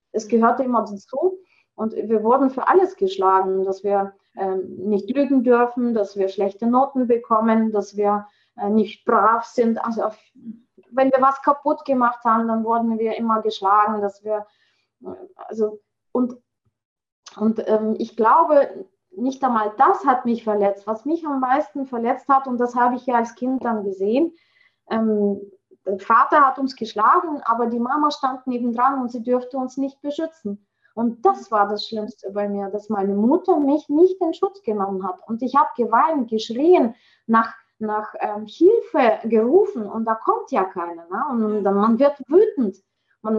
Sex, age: female, 20-39